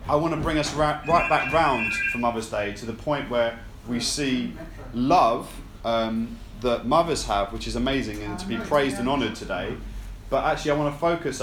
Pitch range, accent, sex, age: 110-135 Hz, British, male, 20-39